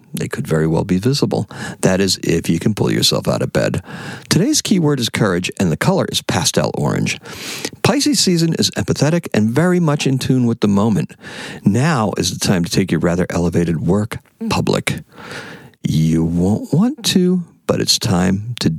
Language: English